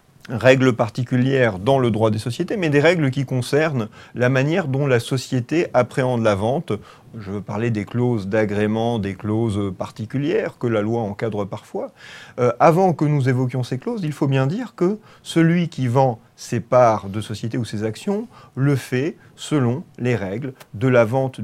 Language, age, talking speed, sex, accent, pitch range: French, 40-59, 180 wpm, male, French, 115-150 Hz